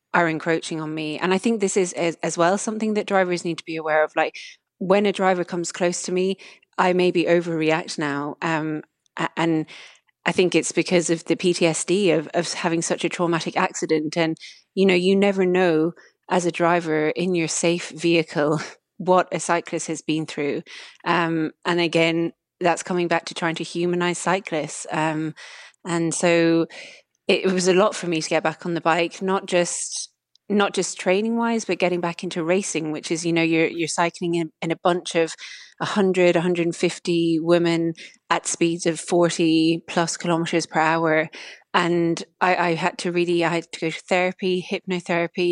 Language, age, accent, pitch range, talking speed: English, 30-49, British, 160-180 Hz, 185 wpm